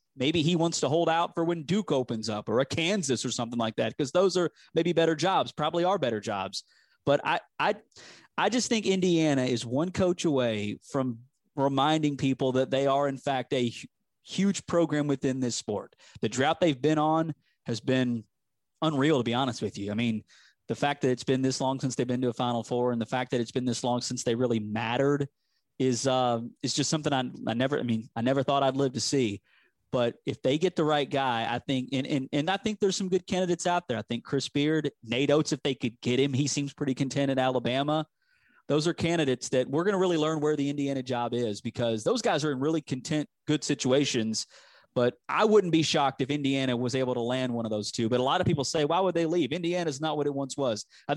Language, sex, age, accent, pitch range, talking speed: English, male, 30-49, American, 125-160 Hz, 240 wpm